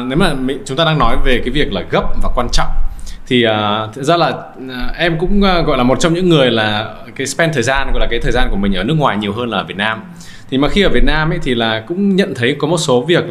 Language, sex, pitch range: Vietnamese, male, 110-160 Hz